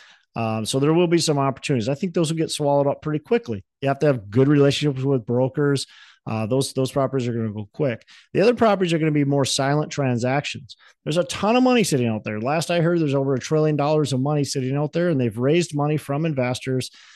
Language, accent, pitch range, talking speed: English, American, 115-150 Hz, 245 wpm